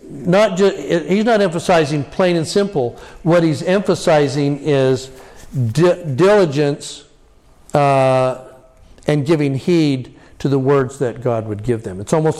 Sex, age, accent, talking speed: male, 50-69, American, 135 wpm